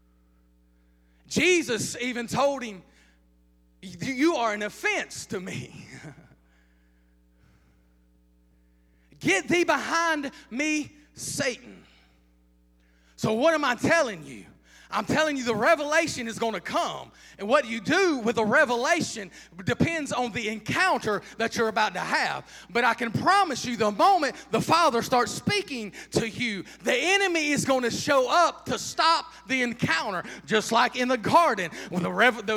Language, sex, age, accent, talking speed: English, male, 30-49, American, 145 wpm